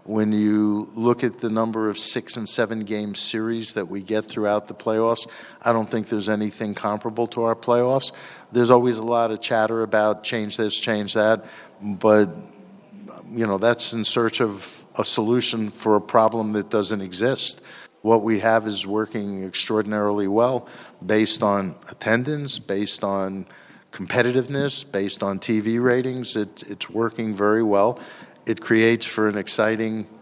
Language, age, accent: English, 50-69, American